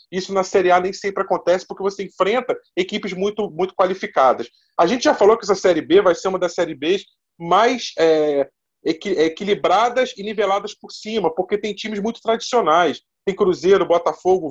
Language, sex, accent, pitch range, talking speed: Portuguese, male, Brazilian, 170-210 Hz, 180 wpm